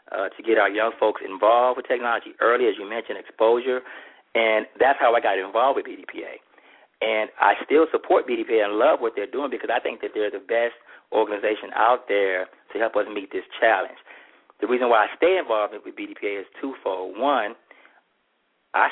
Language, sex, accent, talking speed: English, male, American, 190 wpm